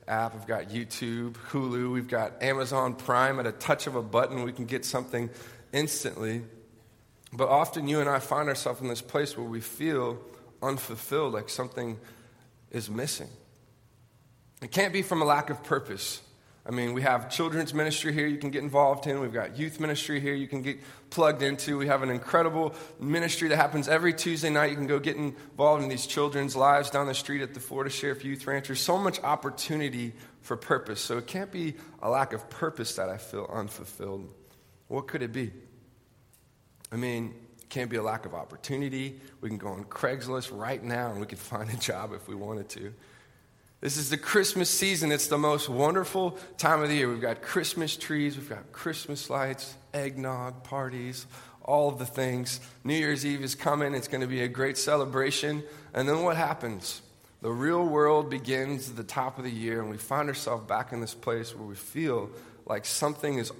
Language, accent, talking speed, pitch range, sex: English, American, 200 wpm, 120-145 Hz, male